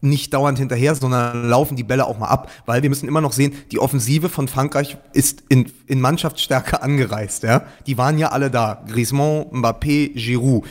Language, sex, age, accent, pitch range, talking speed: German, male, 30-49, German, 125-150 Hz, 190 wpm